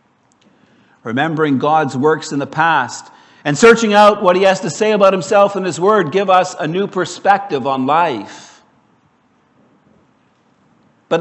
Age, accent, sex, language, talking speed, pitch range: 60-79, American, male, English, 145 wpm, 155-200 Hz